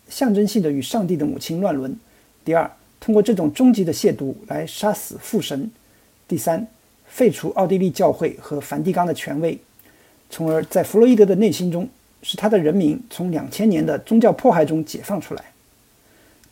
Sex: male